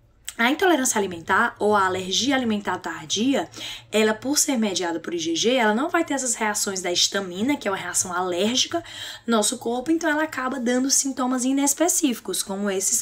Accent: Brazilian